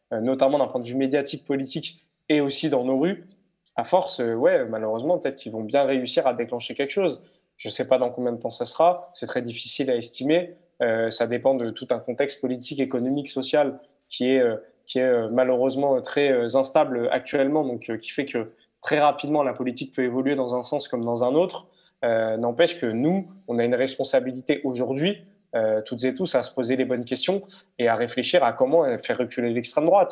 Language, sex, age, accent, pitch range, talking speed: French, male, 20-39, French, 120-145 Hz, 210 wpm